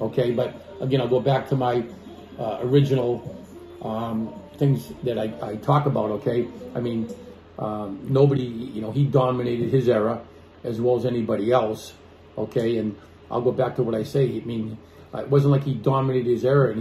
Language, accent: English, American